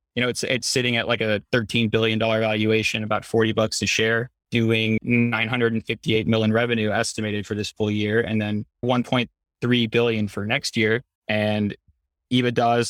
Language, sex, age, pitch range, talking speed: English, male, 20-39, 105-120 Hz, 165 wpm